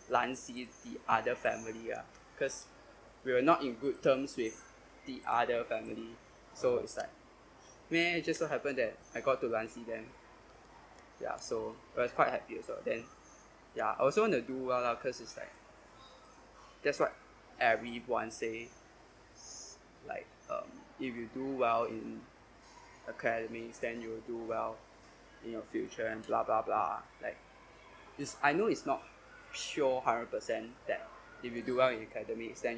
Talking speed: 170 wpm